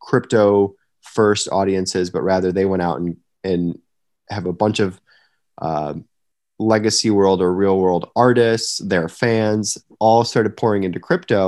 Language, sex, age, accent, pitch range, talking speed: English, male, 20-39, American, 90-110 Hz, 140 wpm